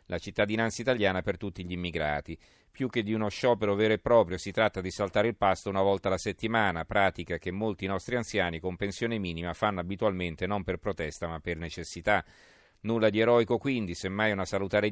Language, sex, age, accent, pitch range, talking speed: Italian, male, 40-59, native, 90-110 Hz, 195 wpm